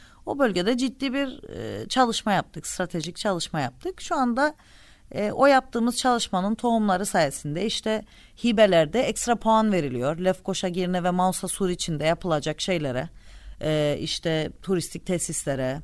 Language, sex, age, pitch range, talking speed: Turkish, female, 40-59, 155-245 Hz, 130 wpm